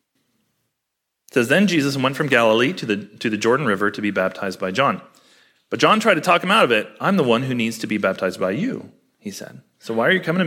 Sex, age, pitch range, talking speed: male, 30-49, 105-150 Hz, 250 wpm